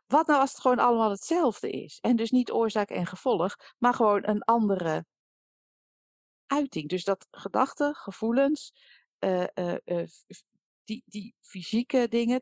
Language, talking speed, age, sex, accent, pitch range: Dutch, 155 wpm, 50-69, female, Dutch, 170-245 Hz